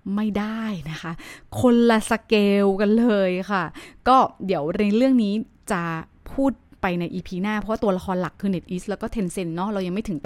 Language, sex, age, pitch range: Thai, female, 20-39, 175-225 Hz